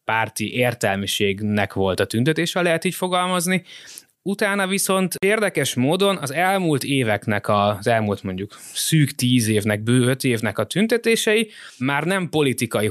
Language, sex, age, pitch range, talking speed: Hungarian, male, 20-39, 115-155 Hz, 145 wpm